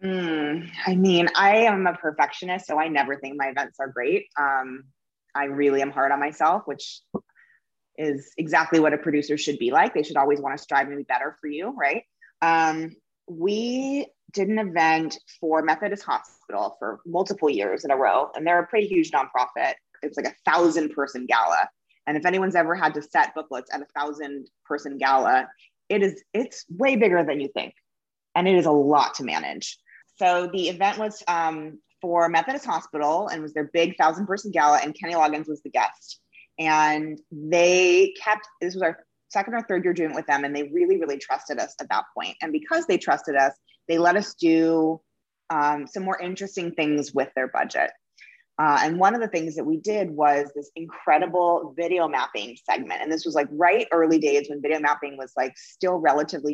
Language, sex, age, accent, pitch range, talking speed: English, female, 20-39, American, 145-190 Hz, 195 wpm